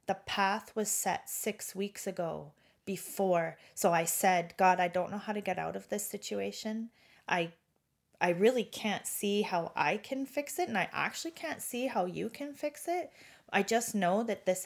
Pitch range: 170-210 Hz